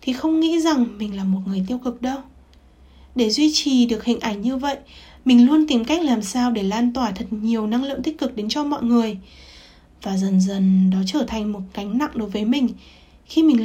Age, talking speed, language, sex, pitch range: 20-39, 230 wpm, Vietnamese, female, 205-265 Hz